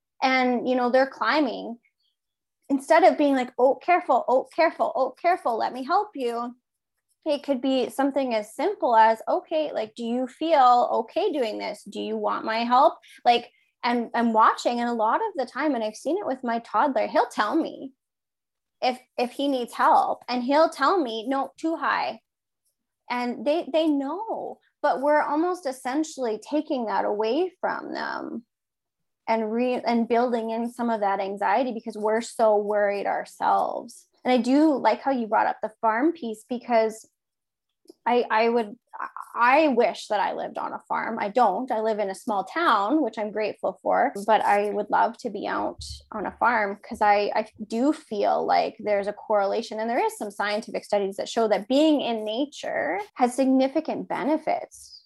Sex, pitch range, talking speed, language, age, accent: female, 220-290 Hz, 180 wpm, English, 20-39, American